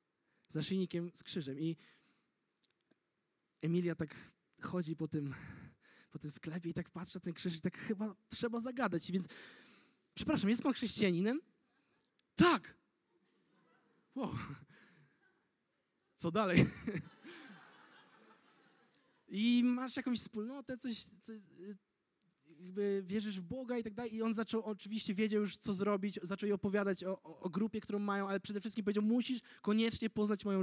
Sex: male